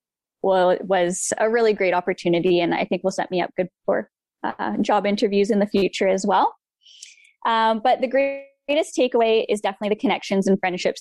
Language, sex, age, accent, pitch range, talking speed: English, female, 10-29, American, 185-225 Hz, 190 wpm